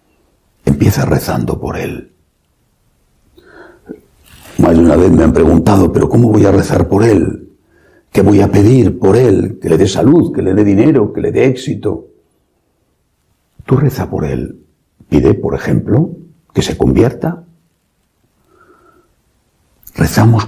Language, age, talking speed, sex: English, 60-79, 140 wpm, male